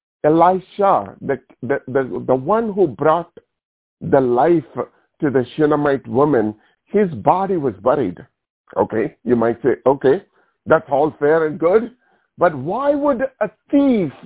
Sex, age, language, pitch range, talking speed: male, 50-69, English, 130-195 Hz, 135 wpm